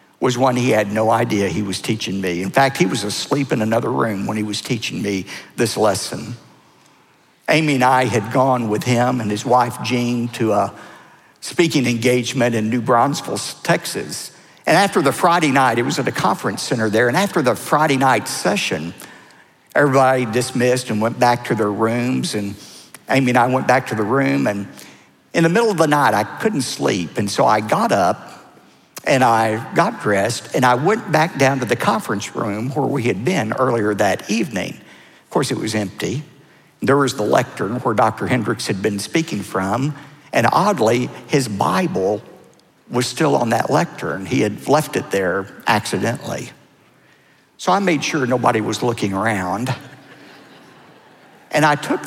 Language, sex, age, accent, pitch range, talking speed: English, male, 50-69, American, 105-130 Hz, 180 wpm